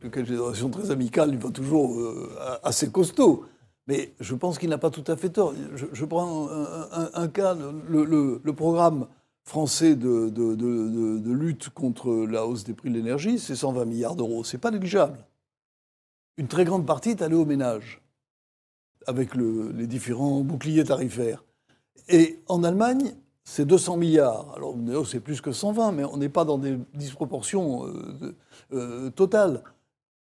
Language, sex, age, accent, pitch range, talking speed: French, male, 60-79, French, 125-160 Hz, 165 wpm